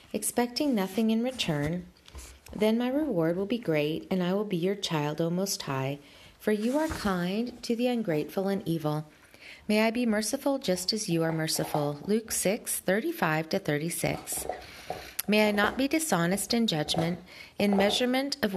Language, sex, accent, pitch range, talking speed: English, female, American, 165-225 Hz, 175 wpm